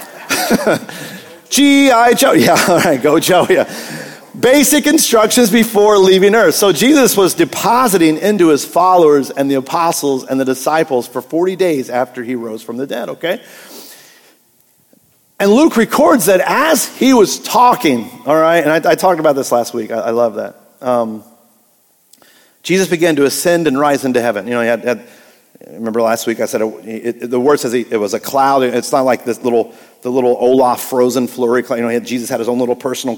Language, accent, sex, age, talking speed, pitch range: English, American, male, 40-59, 190 wpm, 120-175 Hz